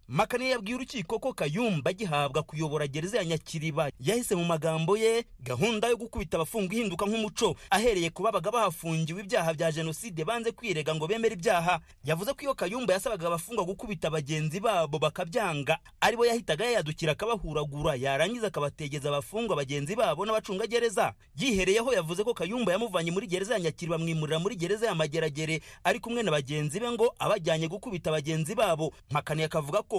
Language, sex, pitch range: English, male, 160-220 Hz